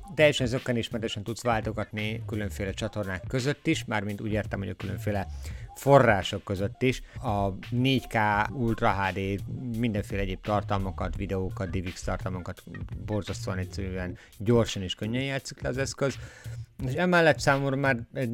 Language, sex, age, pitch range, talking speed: Hungarian, male, 50-69, 100-120 Hz, 130 wpm